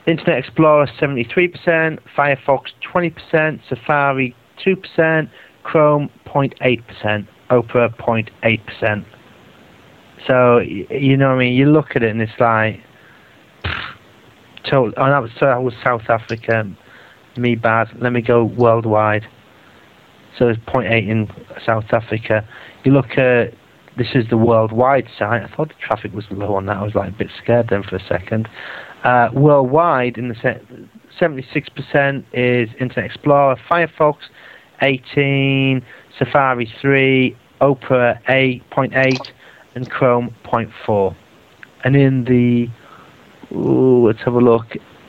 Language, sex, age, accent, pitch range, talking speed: English, male, 30-49, British, 115-135 Hz, 130 wpm